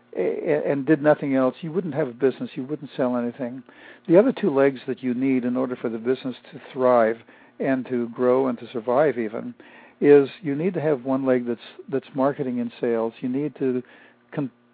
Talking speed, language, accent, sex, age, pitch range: 205 wpm, English, American, male, 60-79, 125-155 Hz